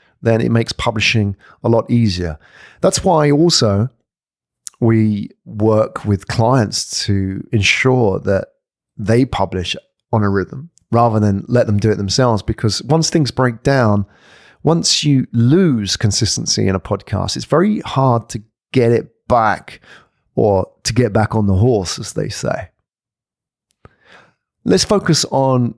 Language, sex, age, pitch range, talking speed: English, male, 40-59, 105-135 Hz, 140 wpm